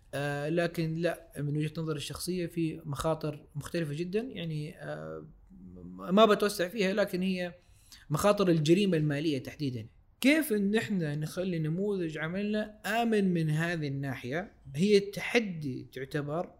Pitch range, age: 140-175 Hz, 20-39